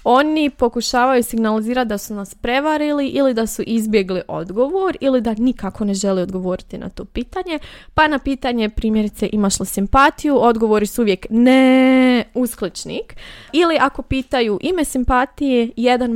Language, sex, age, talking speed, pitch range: Croatian, female, 20-39, 145 wpm, 205-260 Hz